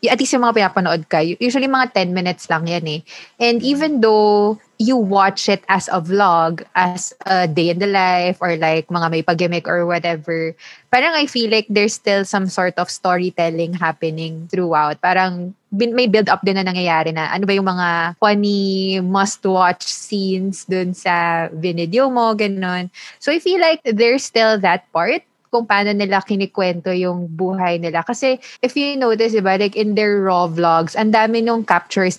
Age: 20-39